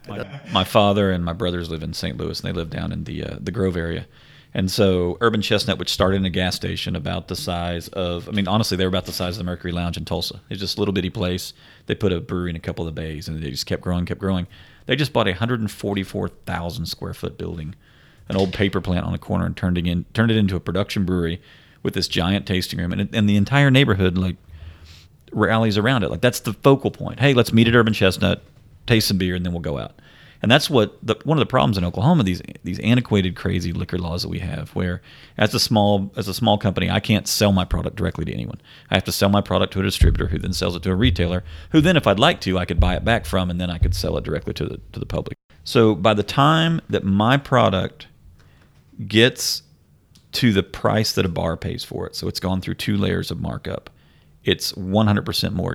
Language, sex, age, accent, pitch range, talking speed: English, male, 40-59, American, 90-105 Hz, 250 wpm